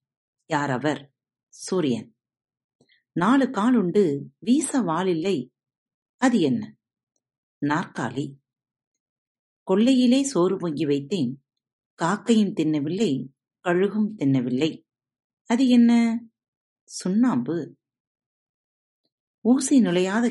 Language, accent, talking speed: Tamil, native, 70 wpm